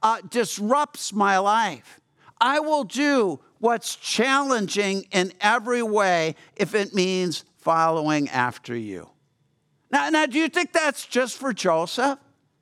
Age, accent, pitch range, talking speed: 50-69, American, 195-260 Hz, 130 wpm